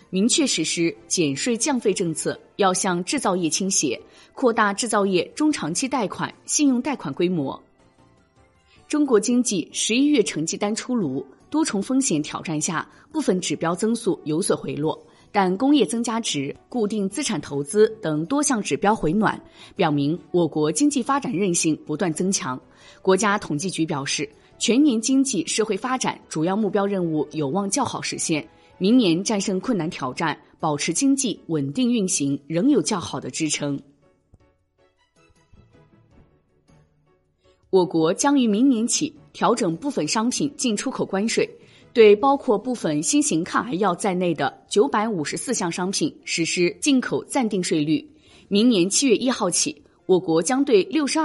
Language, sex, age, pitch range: Chinese, female, 20-39, 160-255 Hz